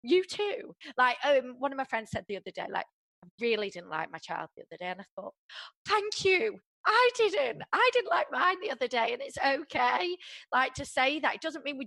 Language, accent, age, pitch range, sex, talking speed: English, British, 20-39, 200-260 Hz, female, 240 wpm